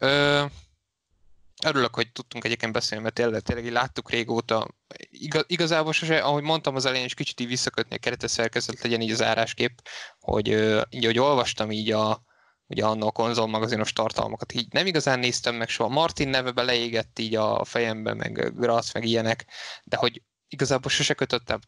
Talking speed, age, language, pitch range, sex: 160 wpm, 20-39, Hungarian, 110-125 Hz, male